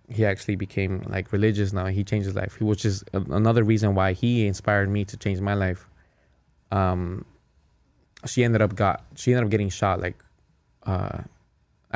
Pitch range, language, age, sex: 95-110 Hz, English, 20-39, male